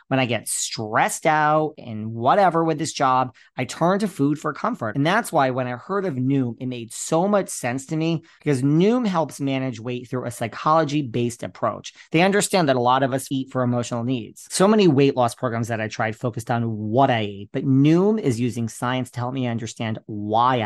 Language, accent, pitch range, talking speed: English, American, 120-155 Hz, 215 wpm